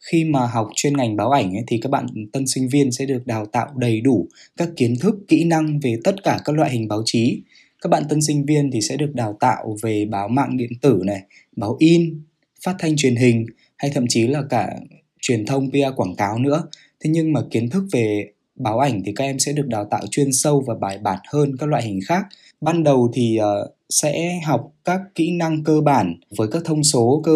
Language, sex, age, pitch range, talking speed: Vietnamese, male, 20-39, 115-150 Hz, 230 wpm